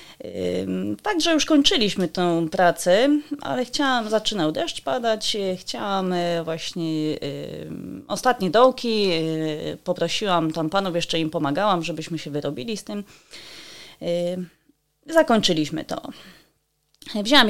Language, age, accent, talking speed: Polish, 30-49, native, 95 wpm